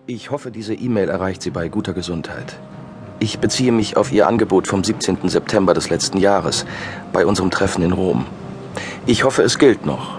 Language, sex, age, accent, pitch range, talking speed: German, male, 40-59, German, 90-115 Hz, 185 wpm